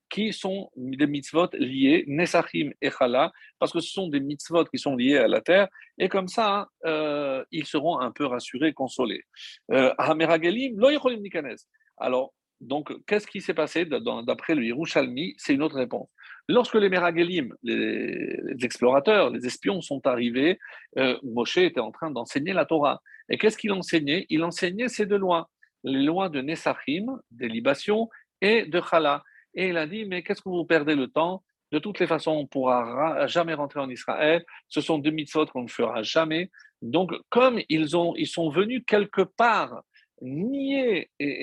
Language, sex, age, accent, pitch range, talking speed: French, male, 50-69, French, 150-210 Hz, 175 wpm